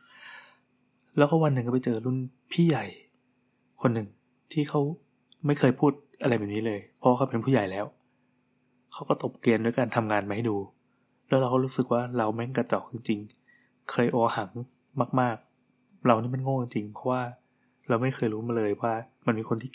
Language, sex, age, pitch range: Thai, male, 20-39, 115-135 Hz